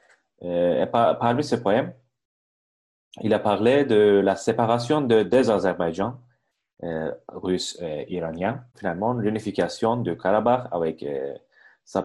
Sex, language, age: male, Turkish, 30-49